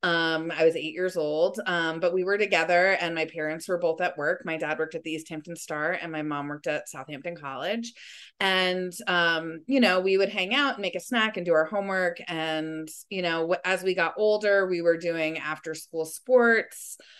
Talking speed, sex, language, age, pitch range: 215 wpm, female, English, 20-39, 160-190 Hz